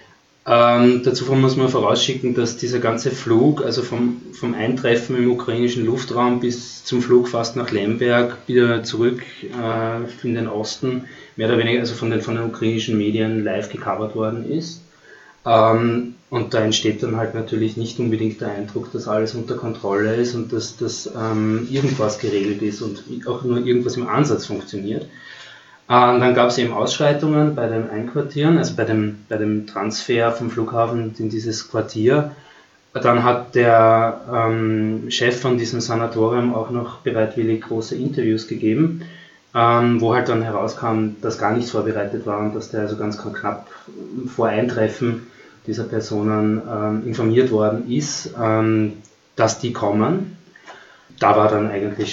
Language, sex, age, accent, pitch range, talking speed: German, male, 20-39, German, 110-120 Hz, 155 wpm